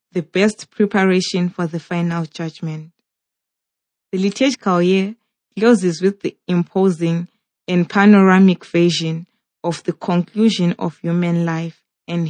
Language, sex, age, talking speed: English, female, 20-39, 115 wpm